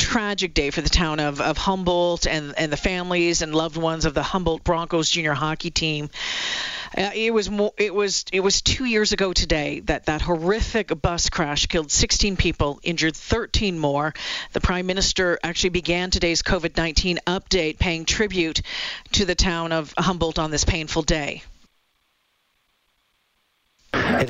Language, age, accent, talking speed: English, 50-69, American, 165 wpm